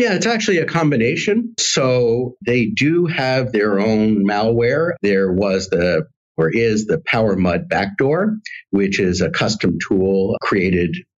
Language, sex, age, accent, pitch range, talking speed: English, male, 50-69, American, 90-120 Hz, 140 wpm